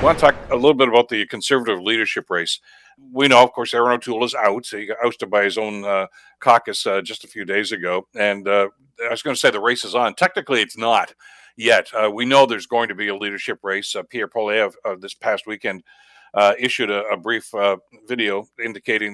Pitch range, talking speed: 105-130 Hz, 230 wpm